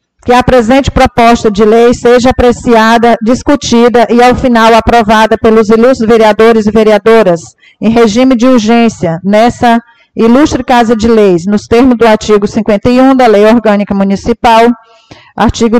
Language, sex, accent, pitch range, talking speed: Portuguese, female, Brazilian, 215-240 Hz, 140 wpm